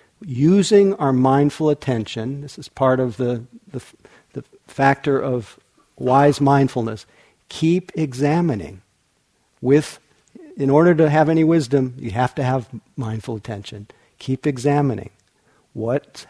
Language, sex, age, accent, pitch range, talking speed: English, male, 50-69, American, 125-145 Hz, 120 wpm